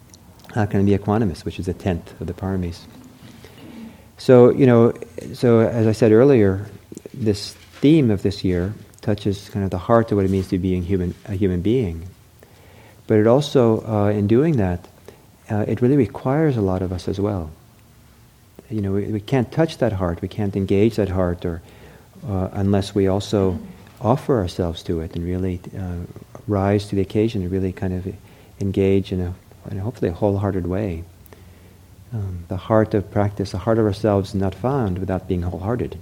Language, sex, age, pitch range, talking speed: English, male, 50-69, 90-110 Hz, 185 wpm